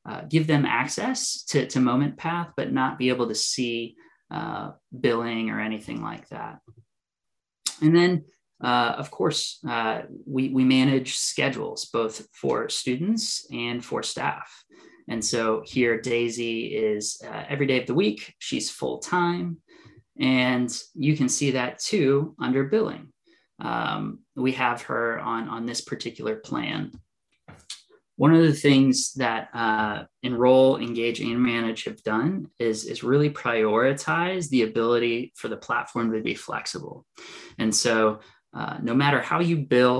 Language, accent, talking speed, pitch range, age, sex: English, American, 150 wpm, 115-145 Hz, 20-39, male